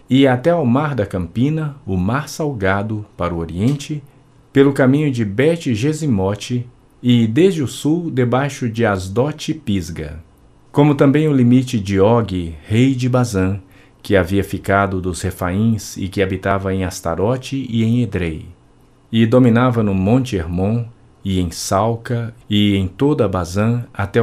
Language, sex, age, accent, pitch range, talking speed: Portuguese, male, 50-69, Brazilian, 100-135 Hz, 145 wpm